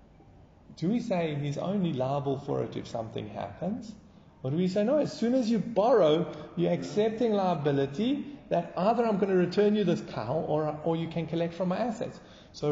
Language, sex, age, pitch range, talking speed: English, male, 30-49, 140-190 Hz, 200 wpm